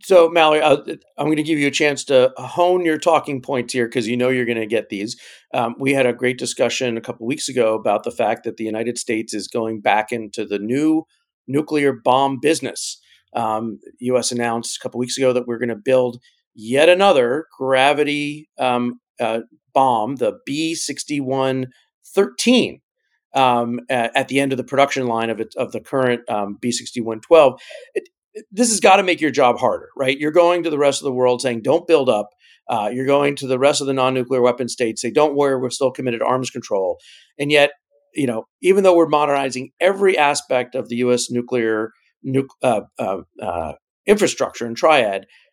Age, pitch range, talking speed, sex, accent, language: 40-59, 120-150 Hz, 195 wpm, male, American, English